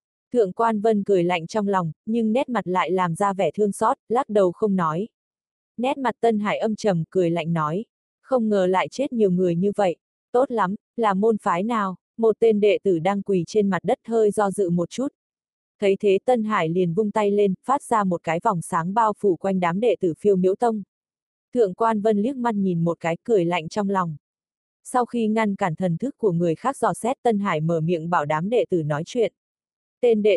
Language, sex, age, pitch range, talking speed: Vietnamese, female, 20-39, 180-225 Hz, 225 wpm